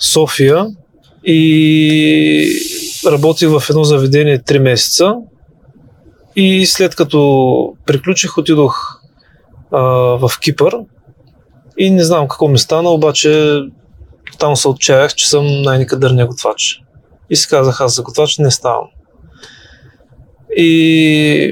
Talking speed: 110 wpm